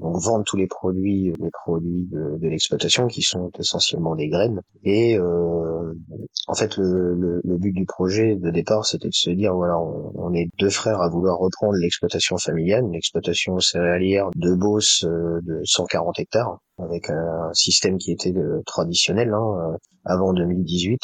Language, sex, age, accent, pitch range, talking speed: French, male, 30-49, French, 85-100 Hz, 165 wpm